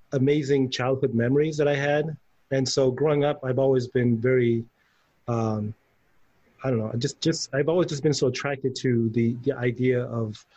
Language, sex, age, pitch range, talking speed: English, male, 30-49, 115-140 Hz, 165 wpm